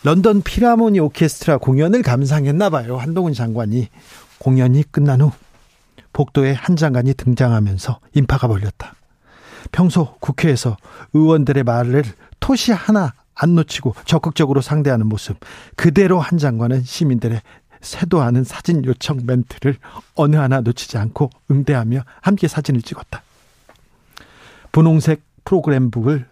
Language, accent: Korean, native